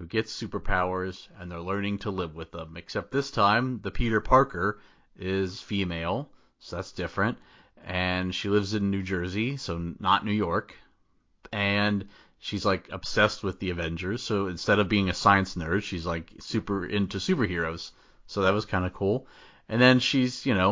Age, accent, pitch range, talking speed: 30-49, American, 90-110 Hz, 175 wpm